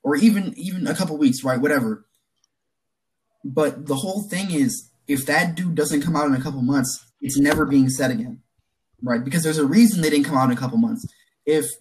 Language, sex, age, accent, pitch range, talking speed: English, male, 20-39, American, 130-190 Hz, 215 wpm